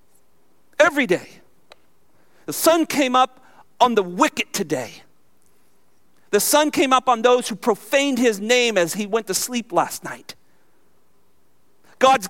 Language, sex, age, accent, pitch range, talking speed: English, male, 50-69, American, 170-240 Hz, 135 wpm